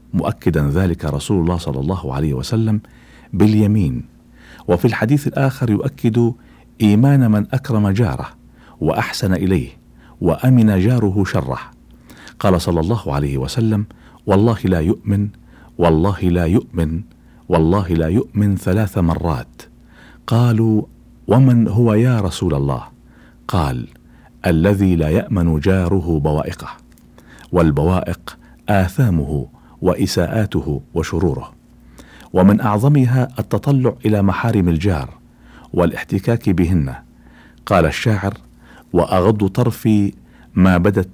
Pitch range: 80-110 Hz